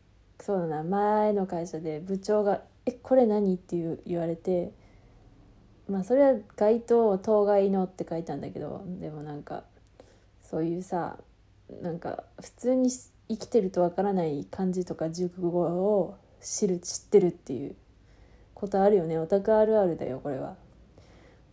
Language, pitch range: Japanese, 170-235 Hz